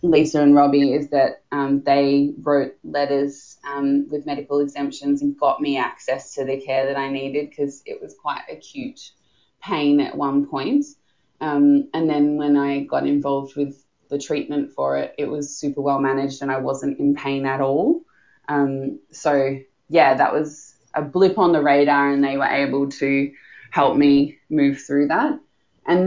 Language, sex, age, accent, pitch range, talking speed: English, female, 20-39, Australian, 140-170 Hz, 175 wpm